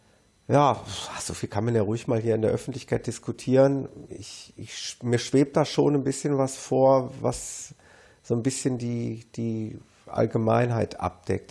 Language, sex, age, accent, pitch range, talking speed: German, male, 50-69, German, 110-130 Hz, 150 wpm